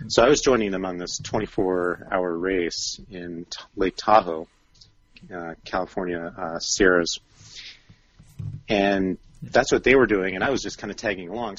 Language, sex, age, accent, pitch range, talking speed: English, male, 40-59, American, 85-105 Hz, 160 wpm